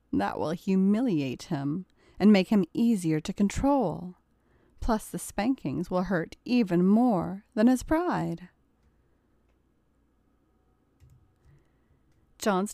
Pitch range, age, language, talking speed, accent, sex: 175-240 Hz, 30-49, English, 100 wpm, American, female